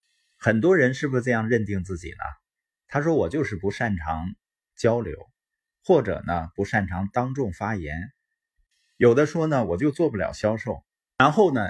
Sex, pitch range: male, 100-165 Hz